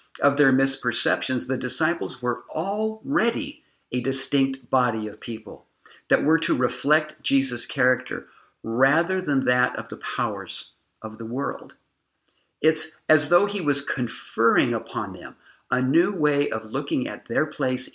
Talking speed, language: 145 wpm, English